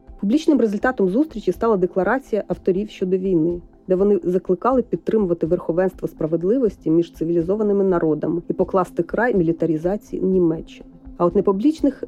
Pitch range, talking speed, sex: 175-215 Hz, 125 wpm, female